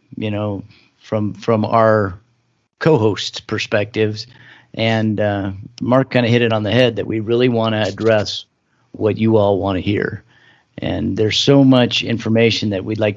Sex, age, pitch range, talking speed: male, 40-59, 105-120 Hz, 170 wpm